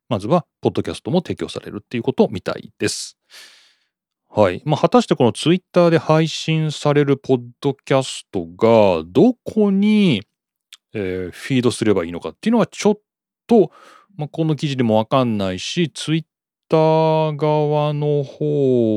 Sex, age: male, 40-59